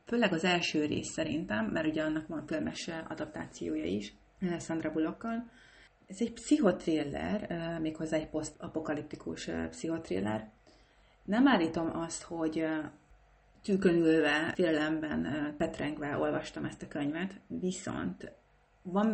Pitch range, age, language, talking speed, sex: 155-185 Hz, 30-49, Hungarian, 105 wpm, female